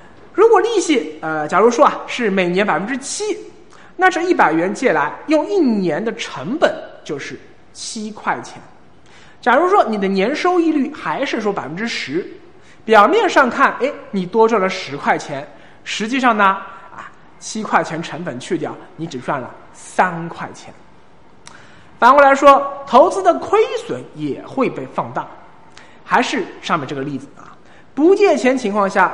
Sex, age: male, 20-39